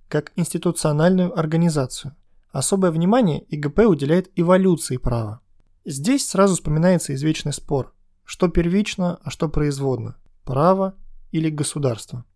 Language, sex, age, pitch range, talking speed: Russian, male, 20-39, 130-180 Hz, 105 wpm